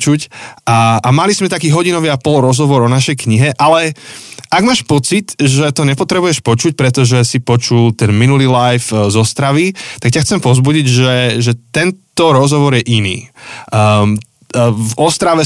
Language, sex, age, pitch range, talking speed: Slovak, male, 20-39, 115-140 Hz, 160 wpm